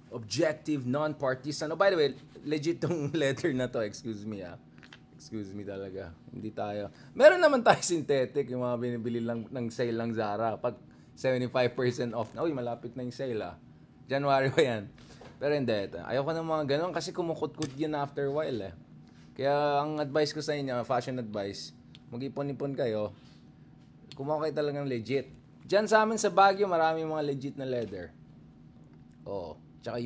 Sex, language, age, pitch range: male, English, 20-39, 120-165 Hz